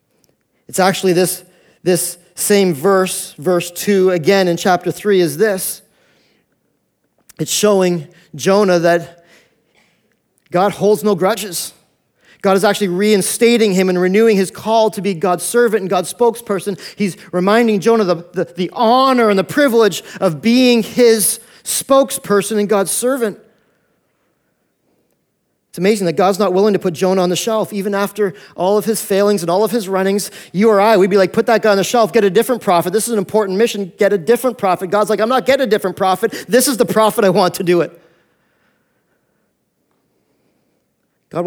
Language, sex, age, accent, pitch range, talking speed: English, male, 40-59, American, 180-215 Hz, 175 wpm